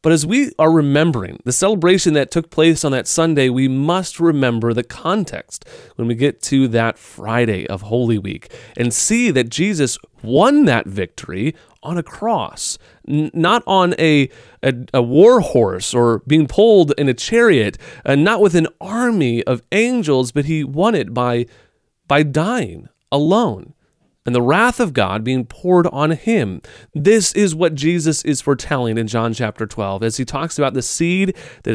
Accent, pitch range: American, 120-175 Hz